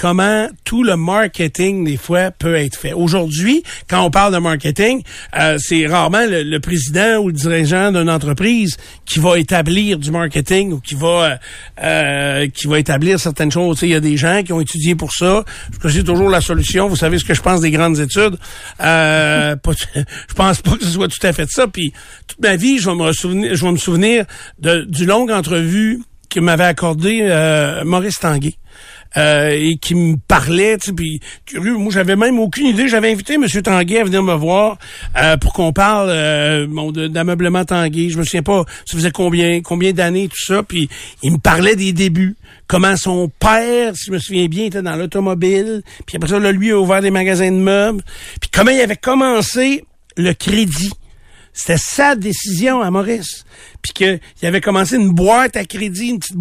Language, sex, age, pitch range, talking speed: French, male, 60-79, 165-200 Hz, 205 wpm